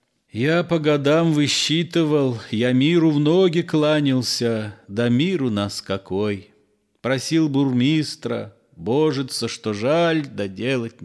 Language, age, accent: Russian, 40-59, native